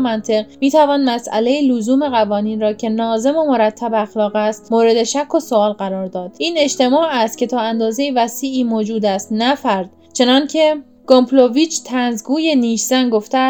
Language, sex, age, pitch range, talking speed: Persian, female, 10-29, 225-275 Hz, 150 wpm